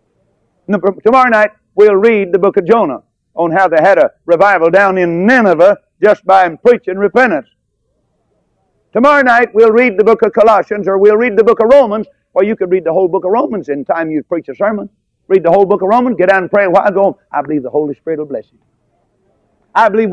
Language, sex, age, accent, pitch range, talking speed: English, male, 50-69, American, 170-230 Hz, 225 wpm